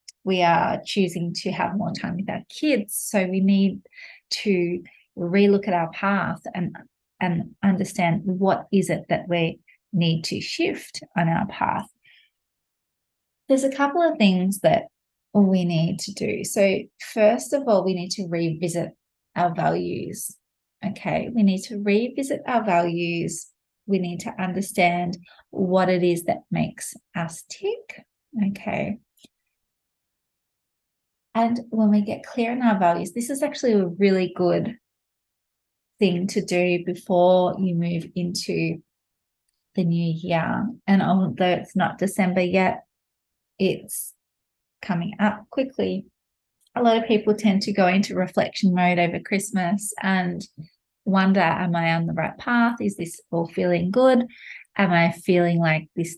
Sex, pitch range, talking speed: female, 175-215 Hz, 145 wpm